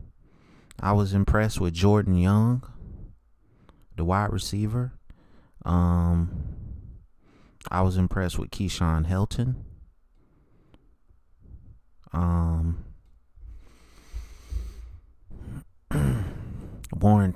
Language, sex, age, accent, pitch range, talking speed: English, male, 30-49, American, 80-95 Hz, 60 wpm